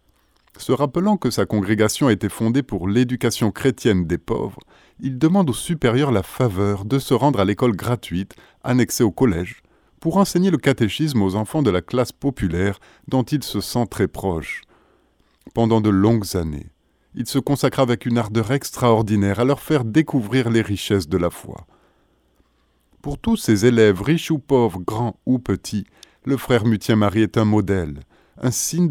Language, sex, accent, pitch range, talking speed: French, male, French, 100-140 Hz, 170 wpm